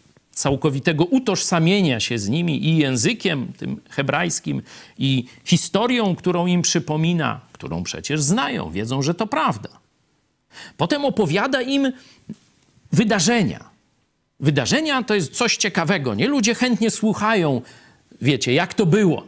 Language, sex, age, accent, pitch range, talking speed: Polish, male, 50-69, native, 120-200 Hz, 120 wpm